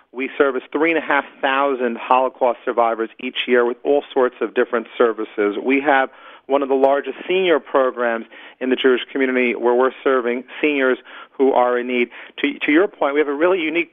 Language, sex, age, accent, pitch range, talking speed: English, male, 40-59, American, 130-160 Hz, 200 wpm